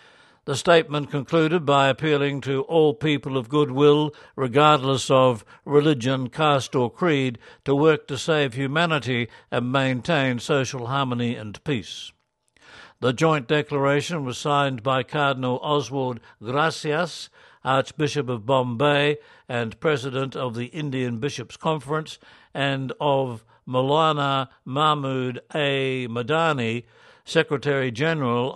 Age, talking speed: 60-79, 110 wpm